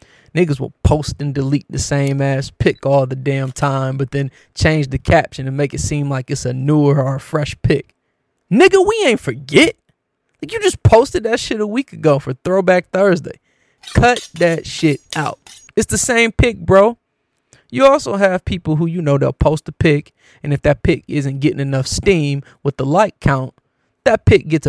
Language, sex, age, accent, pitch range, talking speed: English, male, 20-39, American, 135-170 Hz, 195 wpm